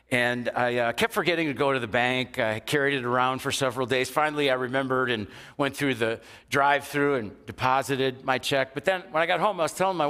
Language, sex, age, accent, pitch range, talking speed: English, male, 50-69, American, 115-150 Hz, 230 wpm